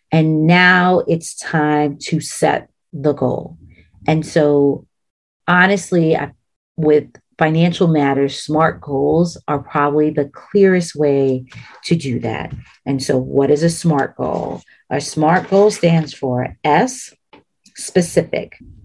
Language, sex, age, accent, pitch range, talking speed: English, female, 40-59, American, 145-175 Hz, 120 wpm